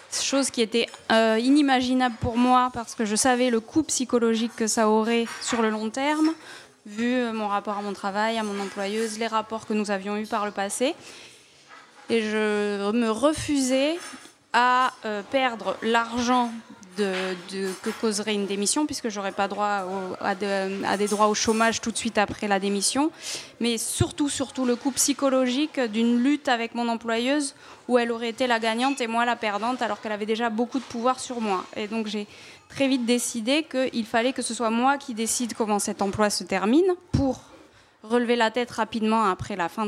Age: 20-39